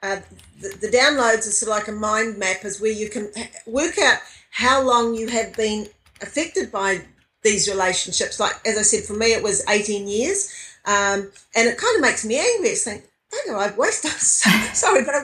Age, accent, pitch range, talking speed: 50-69, Australian, 205-265 Hz, 205 wpm